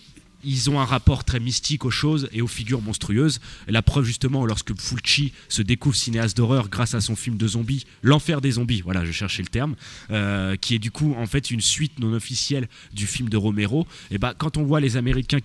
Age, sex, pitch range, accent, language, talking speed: 20-39, male, 105-130 Hz, French, French, 225 wpm